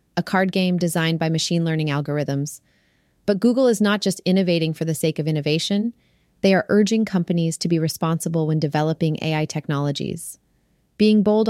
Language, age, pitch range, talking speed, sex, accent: English, 30-49, 160-200 Hz, 165 wpm, female, American